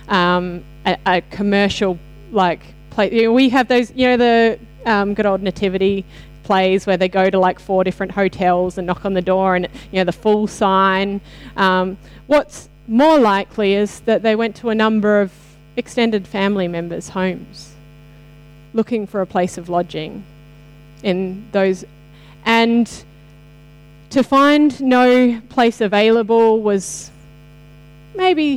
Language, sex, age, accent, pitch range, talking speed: English, female, 20-39, Australian, 175-230 Hz, 140 wpm